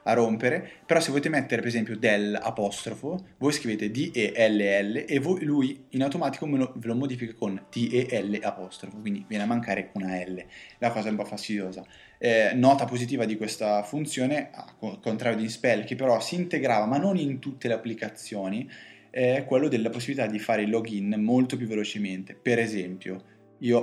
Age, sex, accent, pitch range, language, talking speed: 20-39, male, native, 100-130 Hz, Italian, 185 wpm